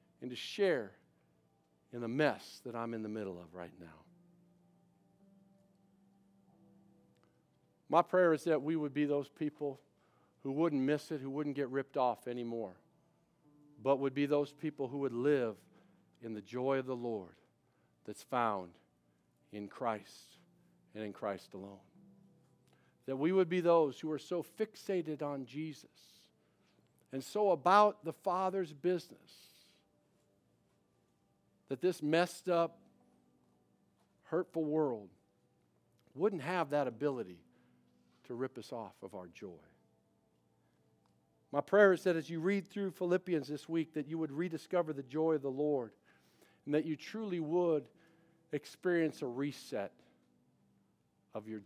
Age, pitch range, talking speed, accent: 50-69, 110-170 Hz, 135 wpm, American